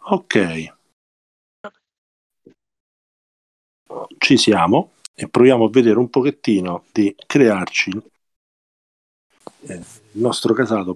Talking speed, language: 75 wpm, English